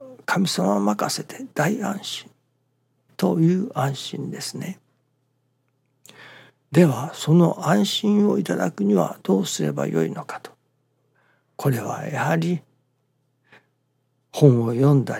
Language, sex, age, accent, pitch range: Japanese, male, 60-79, native, 130-160 Hz